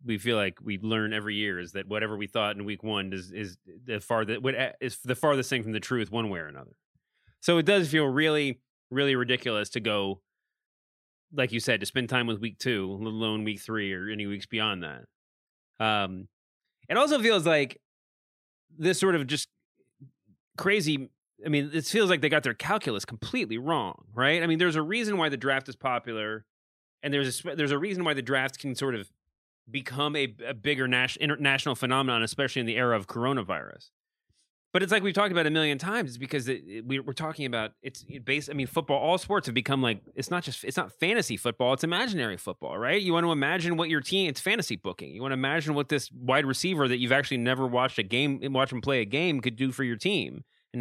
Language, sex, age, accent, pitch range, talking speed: English, male, 30-49, American, 110-150 Hz, 215 wpm